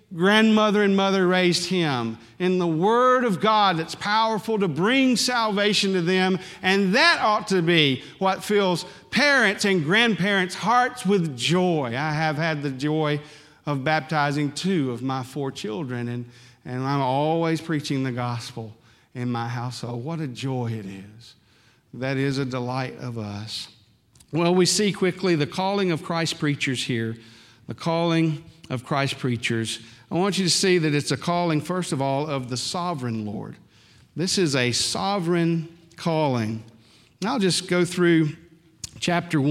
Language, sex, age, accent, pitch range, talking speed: English, male, 50-69, American, 125-175 Hz, 160 wpm